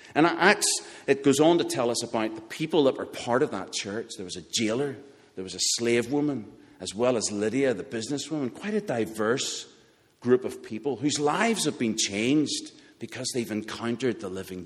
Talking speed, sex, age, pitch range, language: 195 wpm, male, 50-69, 110-160 Hz, English